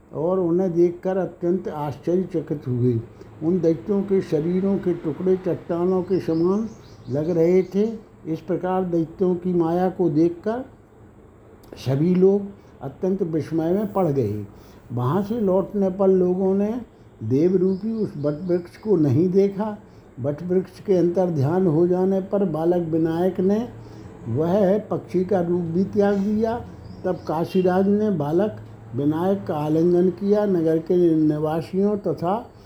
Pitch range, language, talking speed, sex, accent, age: 160-195 Hz, Hindi, 135 wpm, male, native, 60-79